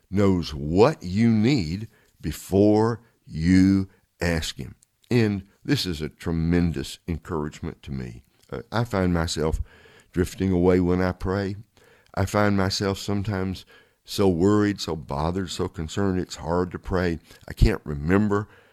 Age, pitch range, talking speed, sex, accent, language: 60-79, 85-105 Hz, 135 wpm, male, American, English